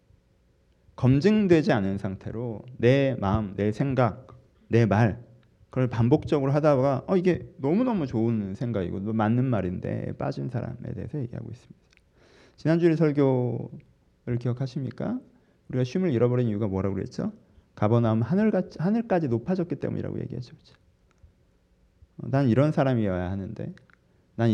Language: Korean